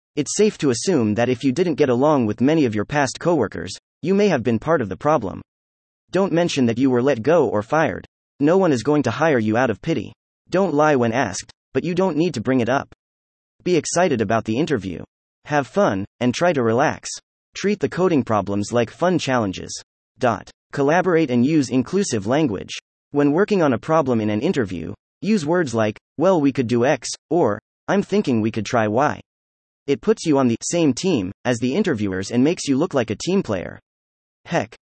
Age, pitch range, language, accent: 30-49, 110-160 Hz, English, American